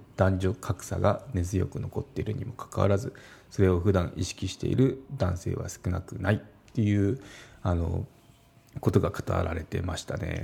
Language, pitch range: Japanese, 95-120 Hz